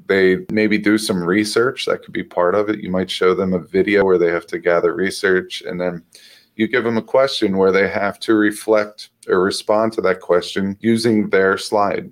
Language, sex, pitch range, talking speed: English, male, 100-115 Hz, 215 wpm